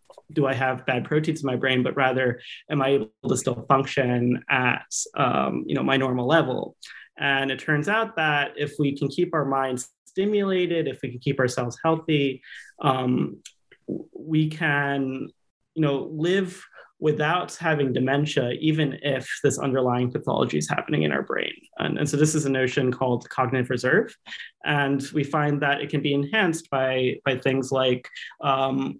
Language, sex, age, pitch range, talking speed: English, male, 30-49, 130-150 Hz, 170 wpm